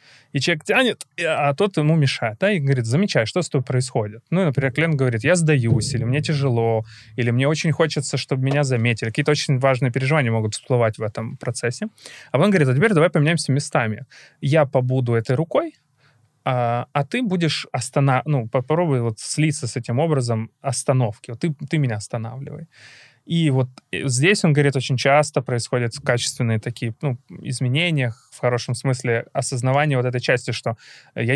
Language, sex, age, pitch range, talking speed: Ukrainian, male, 20-39, 120-150 Hz, 175 wpm